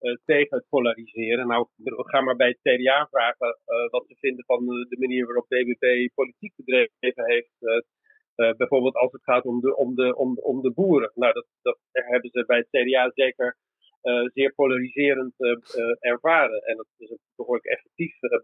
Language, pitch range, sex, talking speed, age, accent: Dutch, 125-165 Hz, male, 190 wpm, 40-59, Dutch